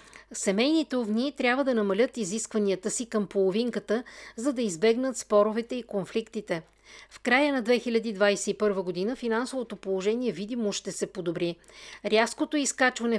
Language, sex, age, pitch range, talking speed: Bulgarian, female, 50-69, 200-250 Hz, 125 wpm